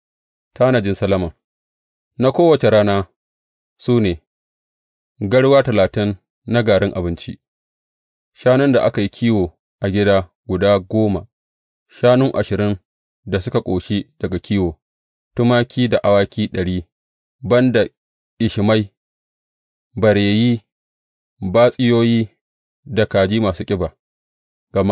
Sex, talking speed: male, 85 wpm